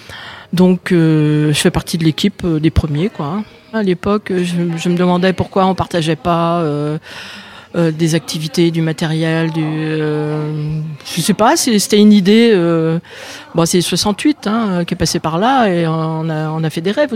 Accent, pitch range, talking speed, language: French, 160-205 Hz, 180 wpm, French